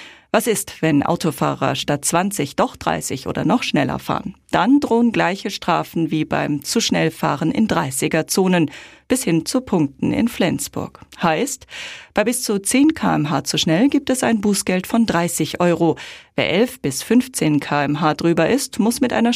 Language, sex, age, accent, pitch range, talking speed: German, female, 40-59, German, 160-210 Hz, 170 wpm